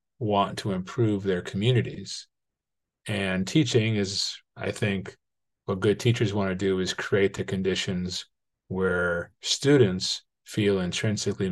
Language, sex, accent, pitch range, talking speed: English, male, American, 95-120 Hz, 125 wpm